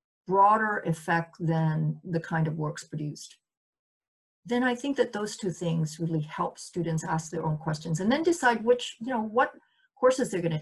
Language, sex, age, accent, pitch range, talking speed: English, female, 40-59, American, 160-220 Hz, 180 wpm